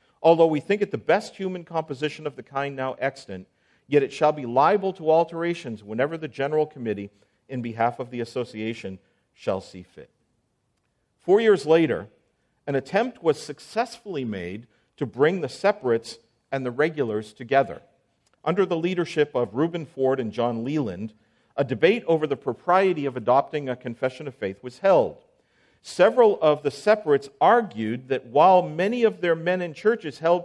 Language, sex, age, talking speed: English, male, 50-69, 165 wpm